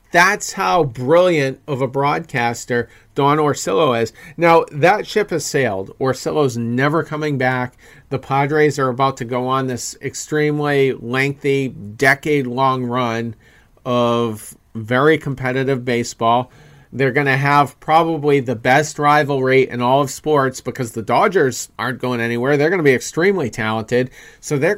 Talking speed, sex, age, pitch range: 145 wpm, male, 40-59, 120-145 Hz